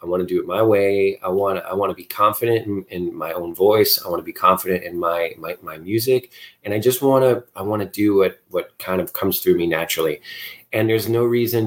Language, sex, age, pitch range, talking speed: English, male, 30-49, 100-130 Hz, 260 wpm